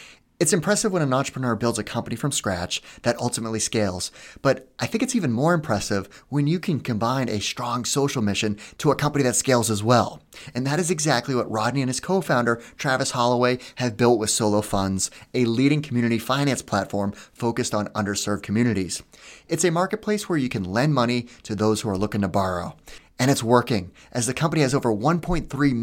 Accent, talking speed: American, 195 wpm